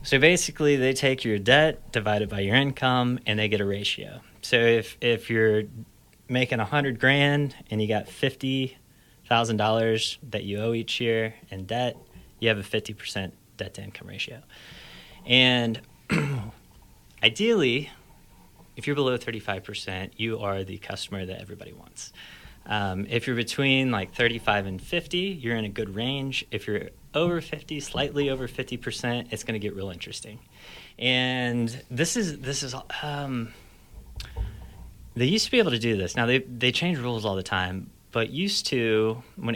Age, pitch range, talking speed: 30-49, 100-130 Hz, 165 wpm